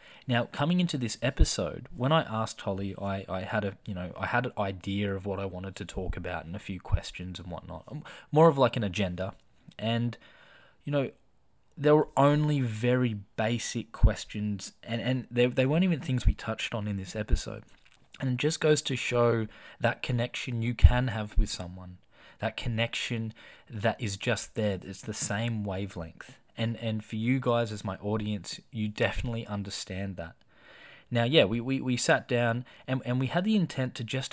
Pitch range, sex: 100-125 Hz, male